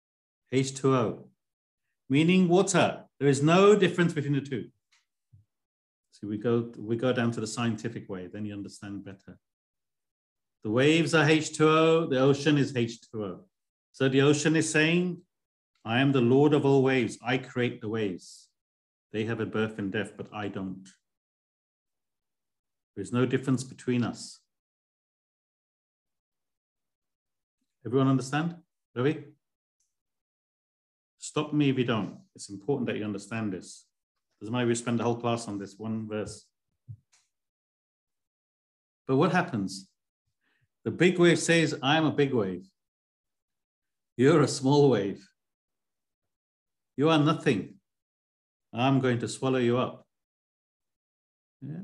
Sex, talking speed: male, 130 wpm